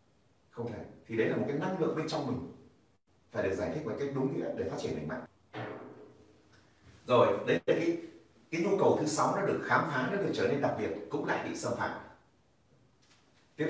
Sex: male